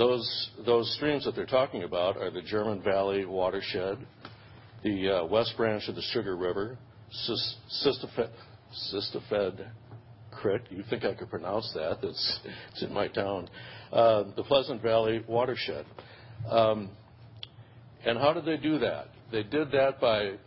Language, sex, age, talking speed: English, male, 60-79, 150 wpm